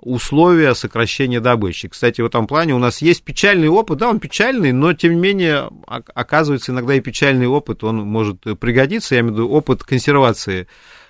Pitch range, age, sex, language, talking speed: 105-145 Hz, 30-49, male, Russian, 180 wpm